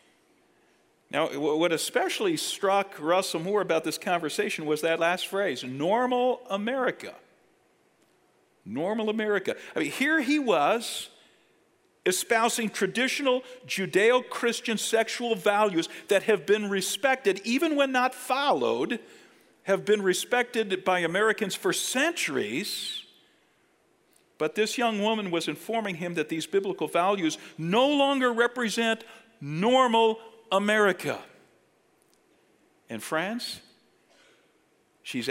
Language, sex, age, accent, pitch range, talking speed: English, male, 50-69, American, 160-240 Hz, 105 wpm